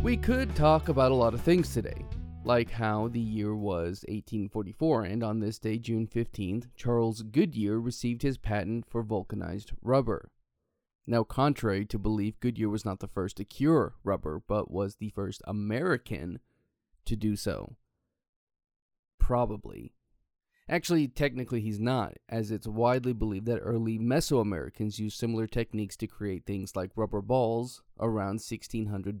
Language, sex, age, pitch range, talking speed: English, male, 20-39, 105-120 Hz, 150 wpm